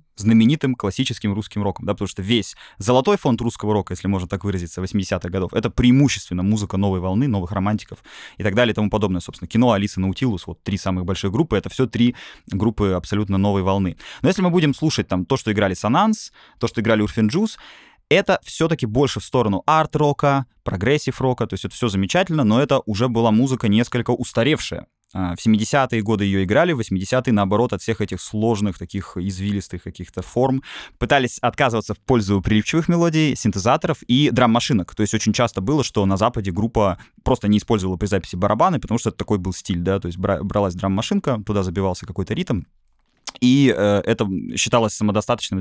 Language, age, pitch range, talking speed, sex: Russian, 20-39, 100-130 Hz, 185 wpm, male